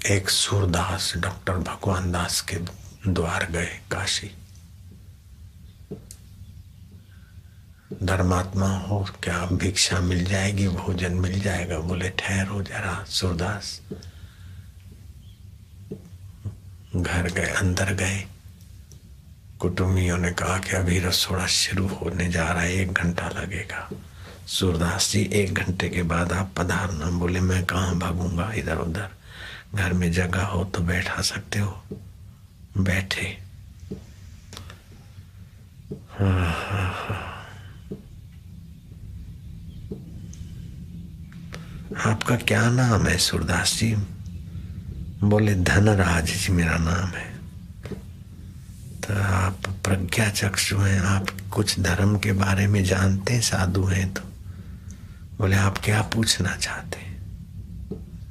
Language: Hindi